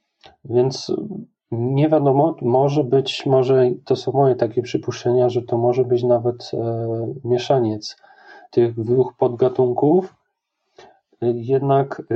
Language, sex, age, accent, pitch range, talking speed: Polish, male, 40-59, native, 120-135 Hz, 110 wpm